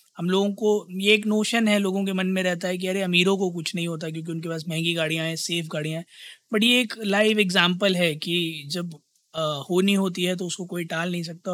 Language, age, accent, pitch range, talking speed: Hindi, 20-39, native, 170-205 Hz, 240 wpm